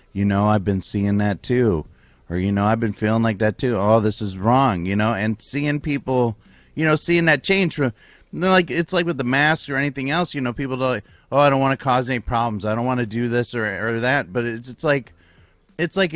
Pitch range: 105-135 Hz